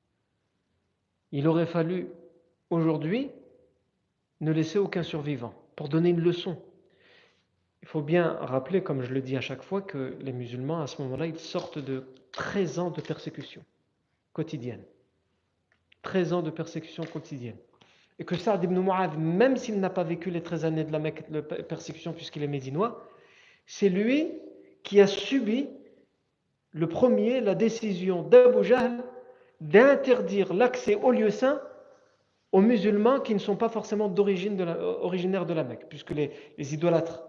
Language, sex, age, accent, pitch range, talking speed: French, male, 50-69, French, 155-205 Hz, 155 wpm